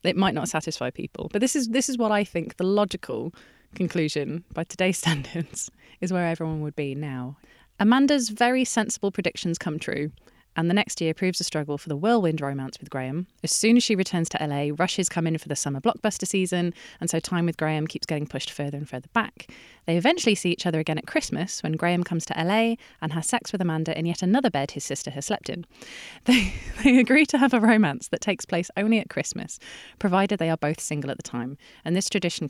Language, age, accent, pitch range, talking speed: English, 20-39, British, 155-210 Hz, 225 wpm